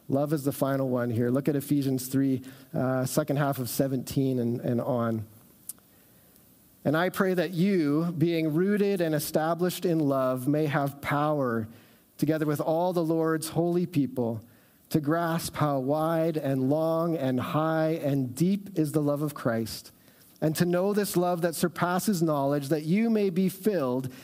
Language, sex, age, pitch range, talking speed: English, male, 40-59, 140-175 Hz, 165 wpm